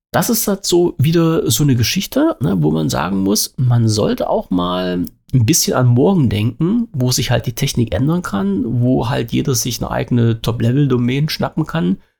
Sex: male